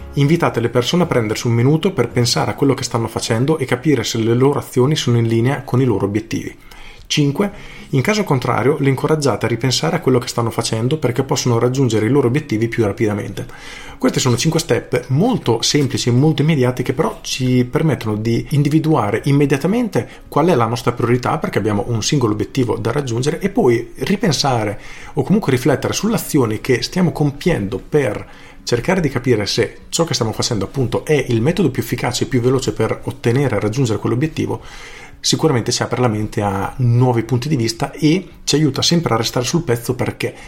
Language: Italian